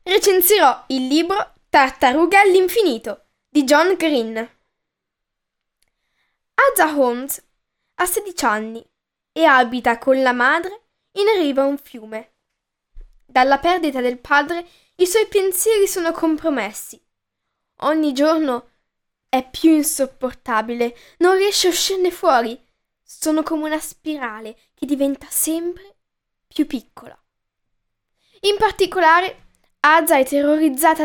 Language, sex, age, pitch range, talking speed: Italian, female, 10-29, 255-350 Hz, 110 wpm